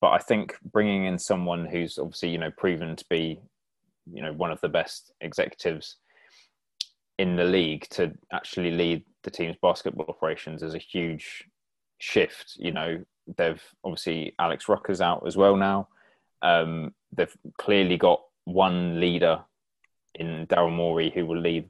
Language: English